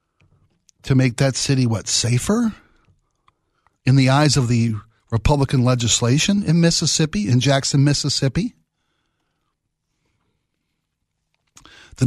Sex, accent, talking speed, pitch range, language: male, American, 95 wpm, 115-140 Hz, English